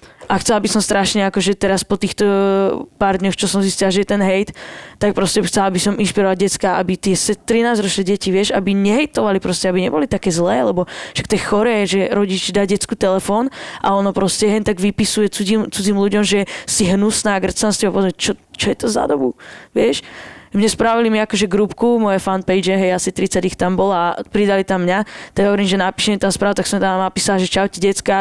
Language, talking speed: Slovak, 205 wpm